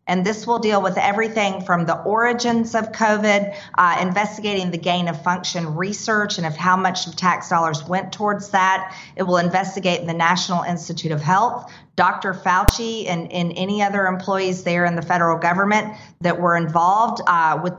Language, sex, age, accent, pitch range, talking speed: English, female, 40-59, American, 175-205 Hz, 180 wpm